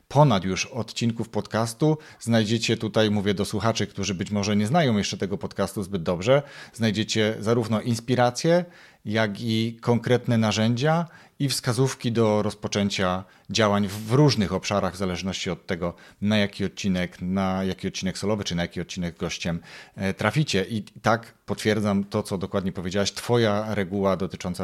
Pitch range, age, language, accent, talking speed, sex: 105-125 Hz, 40-59, Polish, native, 150 wpm, male